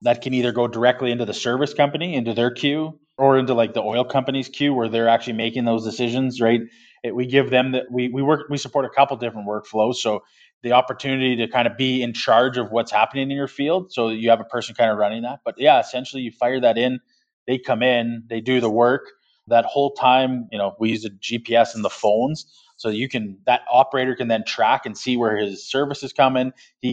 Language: English